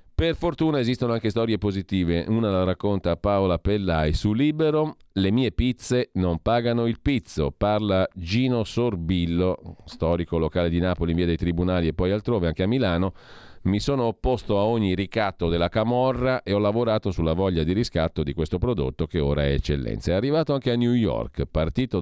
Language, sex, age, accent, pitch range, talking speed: Italian, male, 40-59, native, 80-115 Hz, 180 wpm